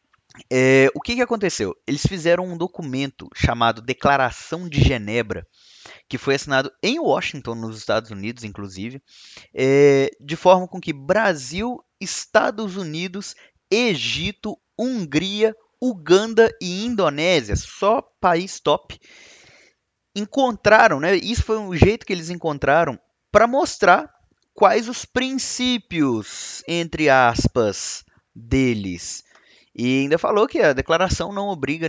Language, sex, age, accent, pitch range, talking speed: Portuguese, male, 20-39, Brazilian, 115-175 Hz, 120 wpm